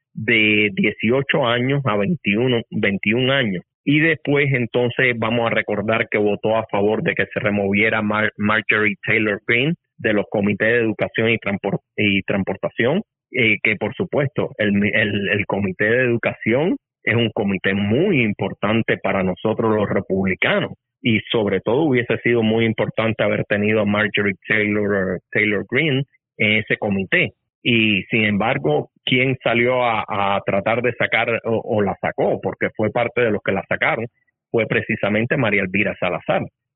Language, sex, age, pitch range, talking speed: Spanish, male, 30-49, 105-125 Hz, 160 wpm